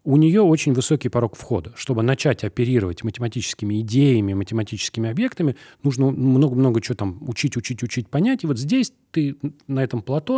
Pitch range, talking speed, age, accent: 105-135 Hz, 170 wpm, 30-49, native